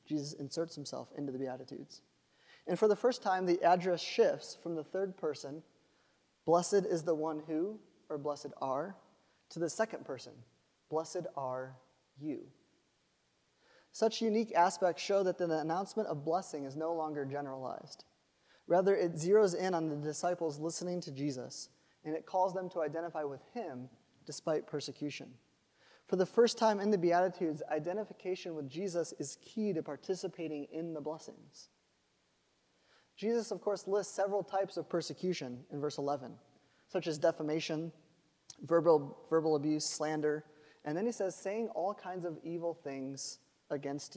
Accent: American